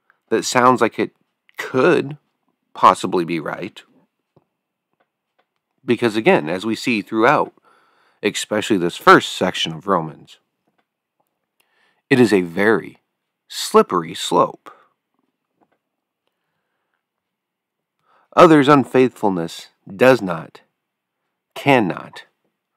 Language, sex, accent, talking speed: English, male, American, 80 wpm